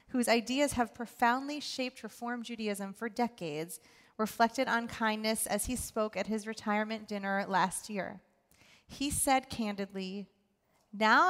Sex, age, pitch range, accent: female, 30-49, 205-240 Hz, American